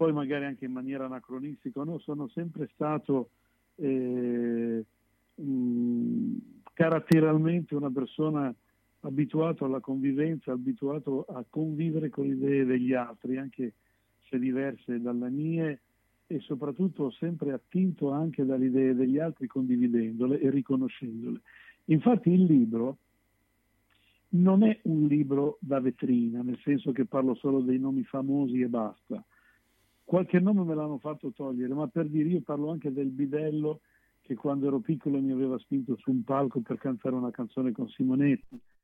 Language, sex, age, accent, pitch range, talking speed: Italian, male, 50-69, native, 130-150 Hz, 140 wpm